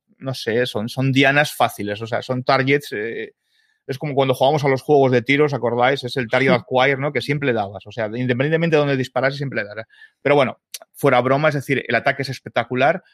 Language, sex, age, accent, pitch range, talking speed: Spanish, male, 30-49, Spanish, 115-140 Hz, 225 wpm